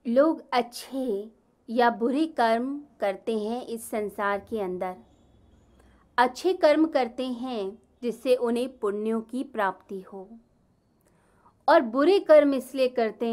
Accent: native